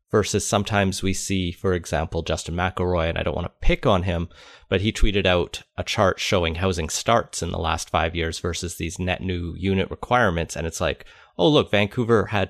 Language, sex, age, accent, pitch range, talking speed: English, male, 30-49, American, 90-110 Hz, 205 wpm